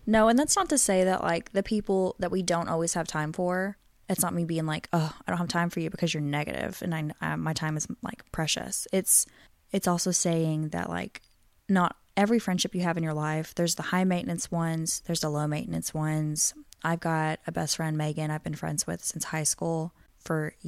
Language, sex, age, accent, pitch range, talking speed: English, female, 20-39, American, 160-185 Hz, 220 wpm